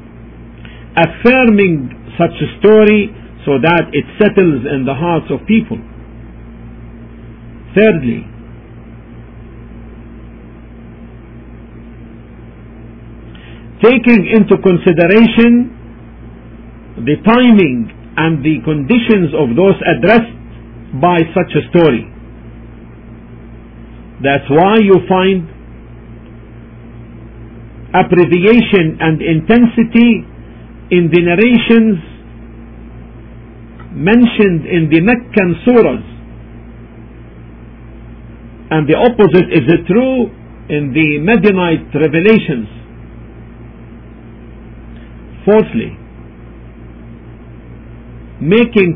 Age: 50-69